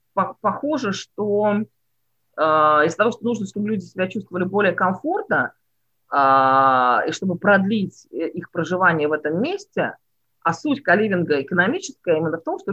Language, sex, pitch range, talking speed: English, female, 160-220 Hz, 140 wpm